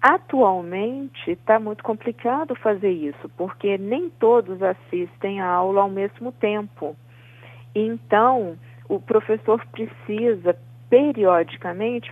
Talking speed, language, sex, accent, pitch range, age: 100 wpm, Portuguese, female, Brazilian, 165-210 Hz, 40-59